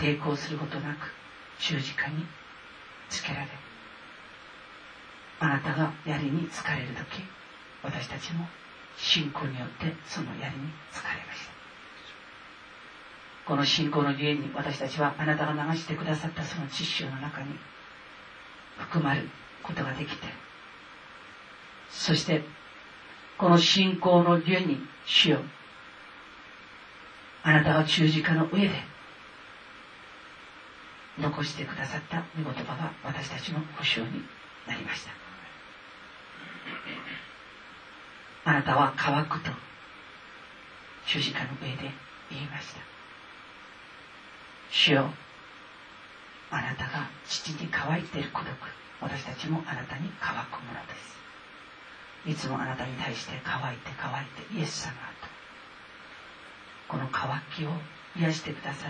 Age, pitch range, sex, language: 40-59, 145-160 Hz, female, Japanese